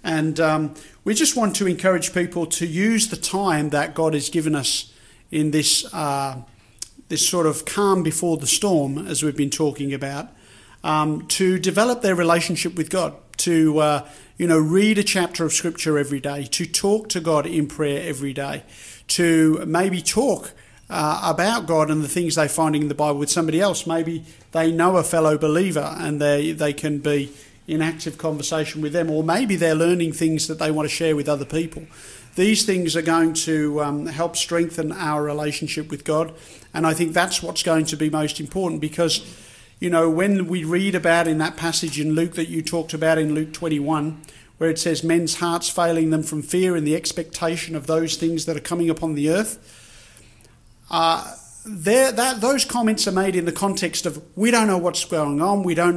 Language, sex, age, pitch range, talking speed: English, male, 50-69, 150-170 Hz, 200 wpm